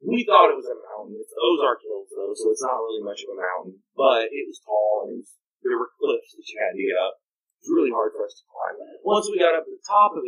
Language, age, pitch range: English, 30-49, 335-450 Hz